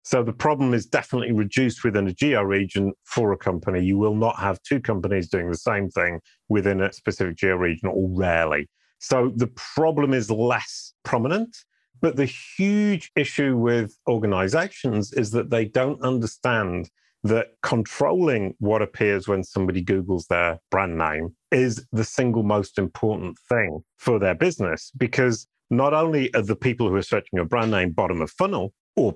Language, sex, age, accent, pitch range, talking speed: English, male, 40-59, British, 100-125 Hz, 170 wpm